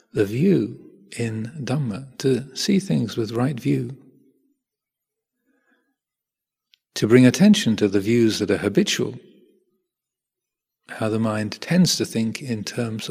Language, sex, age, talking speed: English, male, 40-59, 125 wpm